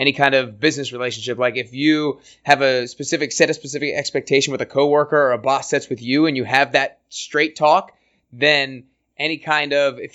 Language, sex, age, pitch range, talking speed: English, male, 20-39, 130-150 Hz, 205 wpm